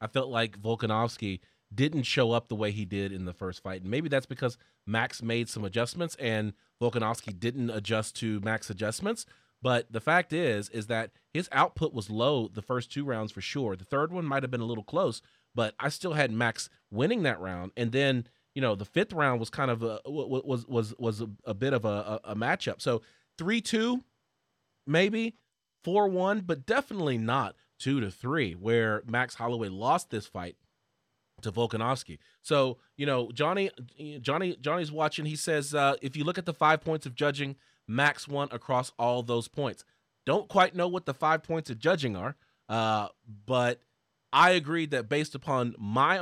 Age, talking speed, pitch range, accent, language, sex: 30-49, 190 wpm, 115-150 Hz, American, English, male